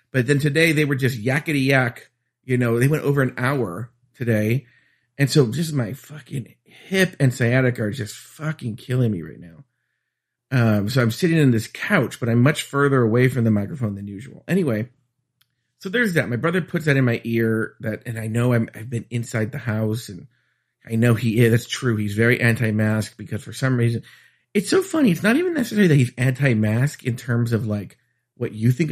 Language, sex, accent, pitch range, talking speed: English, male, American, 115-145 Hz, 205 wpm